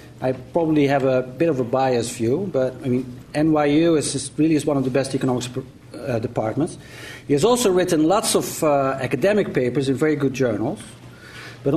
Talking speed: 190 wpm